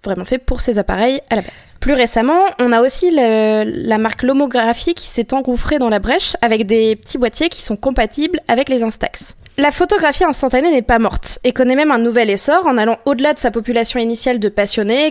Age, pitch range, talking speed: 20-39, 225-280 Hz, 215 wpm